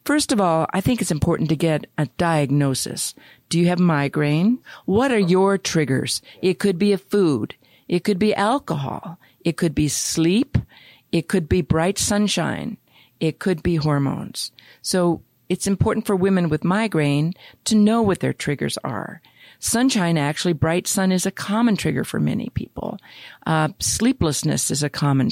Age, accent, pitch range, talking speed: 50-69, American, 155-195 Hz, 165 wpm